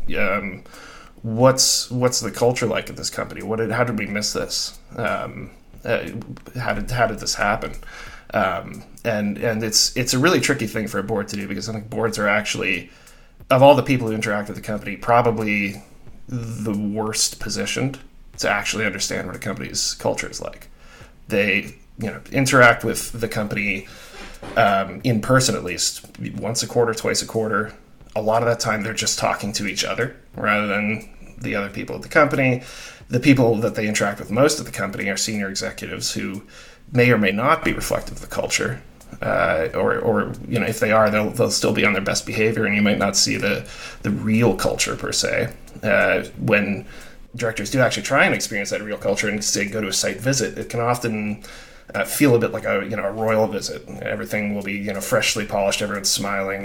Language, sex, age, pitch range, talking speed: English, male, 30-49, 105-120 Hz, 205 wpm